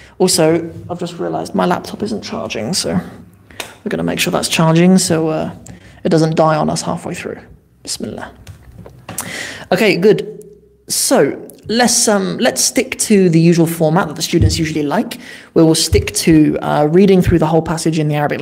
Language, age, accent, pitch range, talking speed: English, 20-39, British, 160-200 Hz, 180 wpm